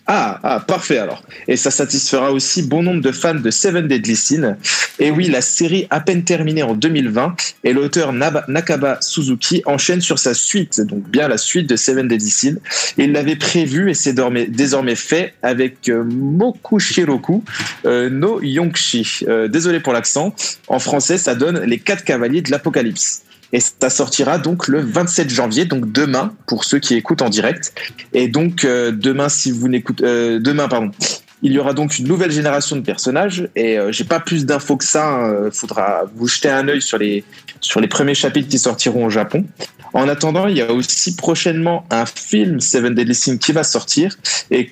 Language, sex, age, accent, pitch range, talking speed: French, male, 20-39, French, 125-160 Hz, 190 wpm